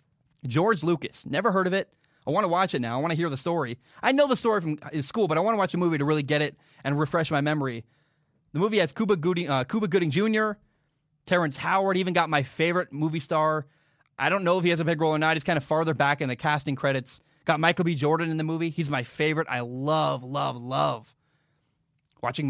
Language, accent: English, American